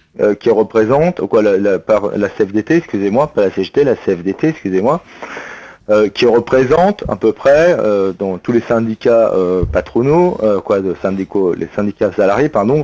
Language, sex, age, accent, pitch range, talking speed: French, male, 40-59, French, 110-150 Hz, 175 wpm